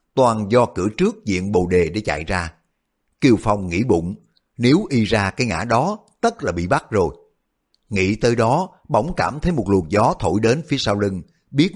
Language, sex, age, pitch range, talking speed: Vietnamese, male, 60-79, 95-130 Hz, 205 wpm